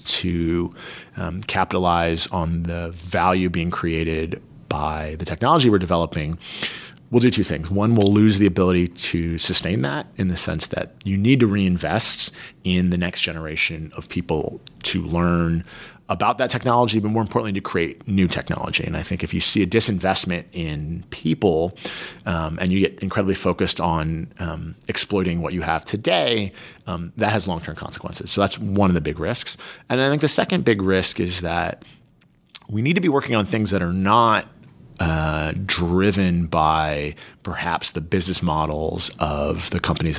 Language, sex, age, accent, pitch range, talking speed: English, male, 30-49, American, 85-105 Hz, 170 wpm